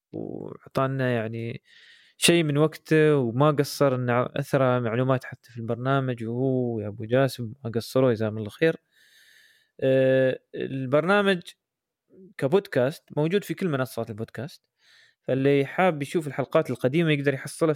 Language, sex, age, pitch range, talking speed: Arabic, male, 20-39, 125-150 Hz, 125 wpm